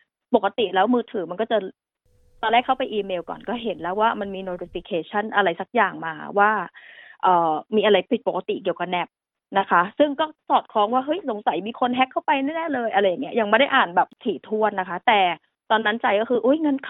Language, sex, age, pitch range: Thai, female, 20-39, 205-255 Hz